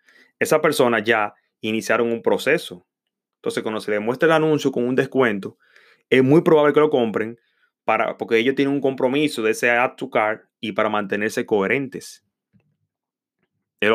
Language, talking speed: Spanish, 160 wpm